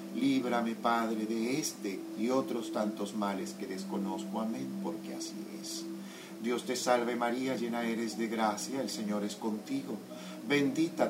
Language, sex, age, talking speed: Spanish, male, 50-69, 145 wpm